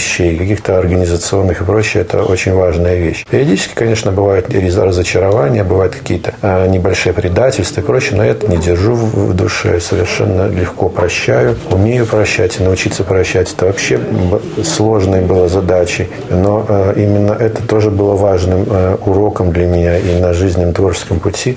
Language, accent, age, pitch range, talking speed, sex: Russian, native, 40-59, 90-105 Hz, 140 wpm, male